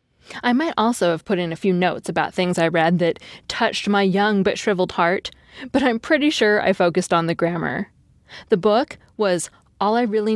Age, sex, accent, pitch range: 20-39, female, American, 175-225 Hz